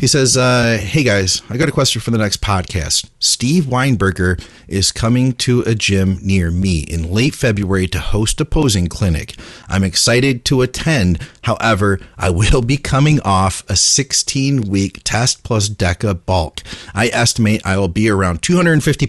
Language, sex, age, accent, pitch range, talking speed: English, male, 40-59, American, 95-120 Hz, 165 wpm